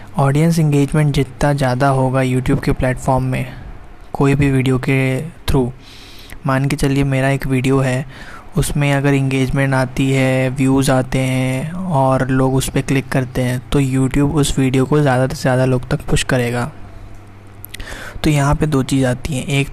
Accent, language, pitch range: native, Hindi, 130-145 Hz